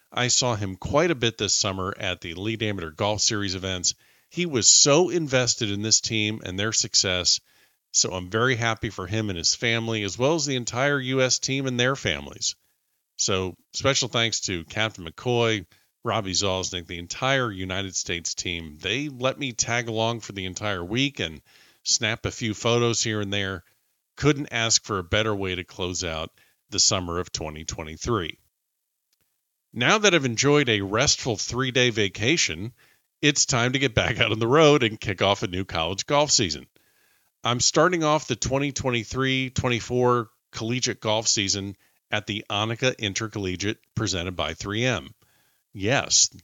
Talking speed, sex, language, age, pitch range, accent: 165 wpm, male, English, 40-59, 95-125 Hz, American